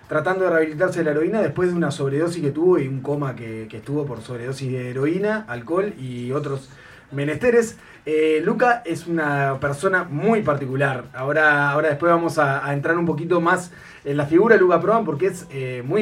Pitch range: 135-185 Hz